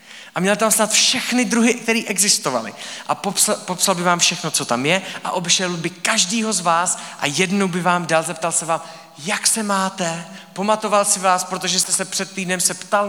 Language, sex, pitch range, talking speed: Czech, male, 165-210 Hz, 200 wpm